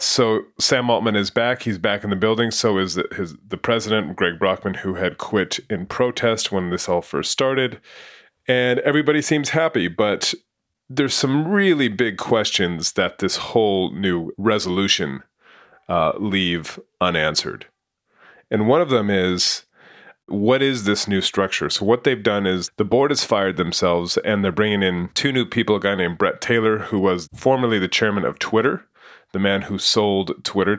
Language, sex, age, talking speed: English, male, 30-49, 175 wpm